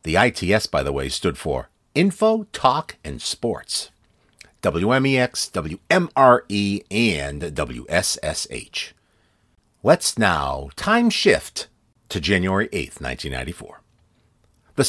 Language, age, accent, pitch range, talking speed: English, 50-69, American, 95-160 Hz, 95 wpm